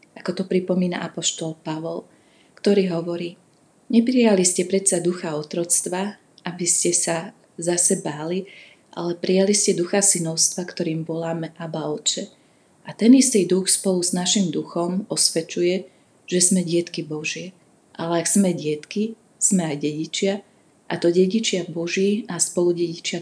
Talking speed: 135 wpm